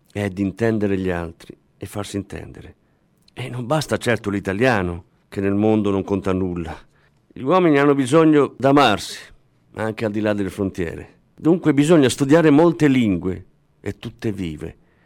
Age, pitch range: 50-69, 100-145 Hz